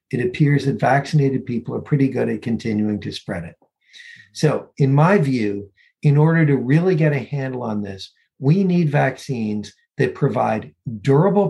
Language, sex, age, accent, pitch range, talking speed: English, male, 50-69, American, 120-155 Hz, 165 wpm